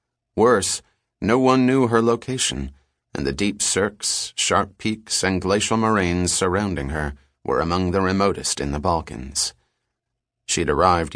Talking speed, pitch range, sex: 140 wpm, 80-110 Hz, male